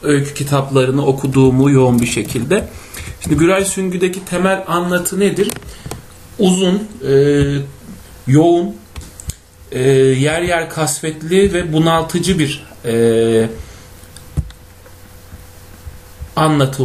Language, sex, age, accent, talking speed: Turkish, male, 40-59, native, 85 wpm